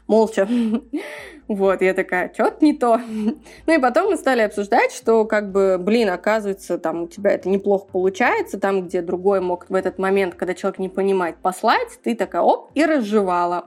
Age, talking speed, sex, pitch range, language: 20-39, 180 wpm, female, 190-230 Hz, Russian